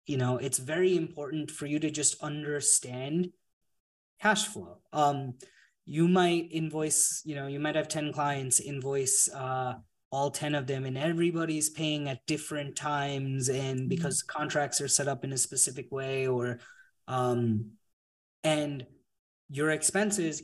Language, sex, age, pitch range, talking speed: English, male, 20-39, 130-155 Hz, 145 wpm